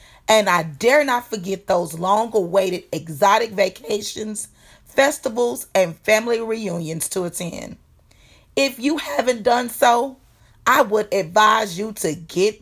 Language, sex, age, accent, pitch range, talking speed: English, female, 40-59, American, 185-250 Hz, 125 wpm